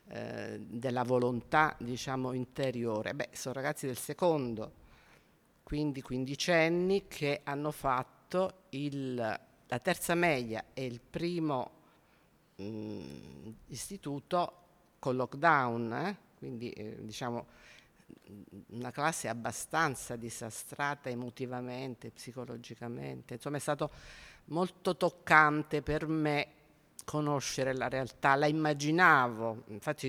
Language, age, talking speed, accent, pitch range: Italian, 50-69, 95 wpm, native, 125-155 Hz